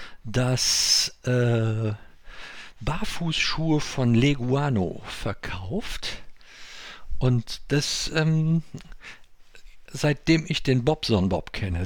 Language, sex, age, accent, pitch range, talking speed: German, male, 50-69, German, 110-140 Hz, 75 wpm